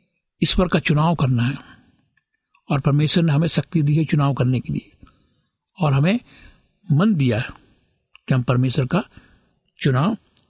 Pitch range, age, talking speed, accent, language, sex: 135-175 Hz, 60-79, 150 wpm, native, Hindi, male